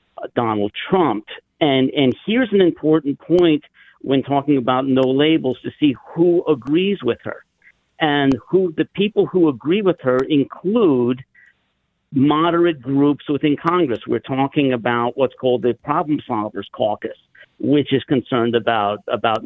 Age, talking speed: 50-69, 140 wpm